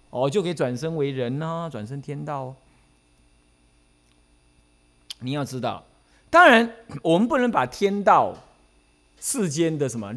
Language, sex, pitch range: Chinese, male, 100-170 Hz